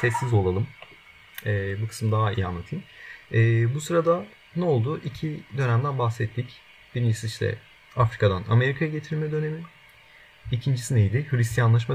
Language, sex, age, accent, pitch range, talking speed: Turkish, male, 40-59, native, 110-150 Hz, 115 wpm